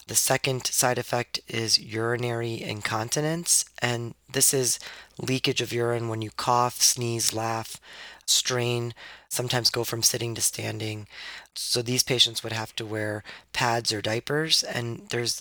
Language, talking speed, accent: English, 145 wpm, American